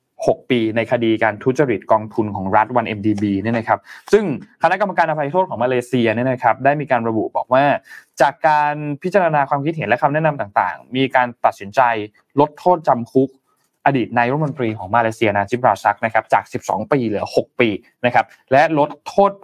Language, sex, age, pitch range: Thai, male, 20-39, 115-150 Hz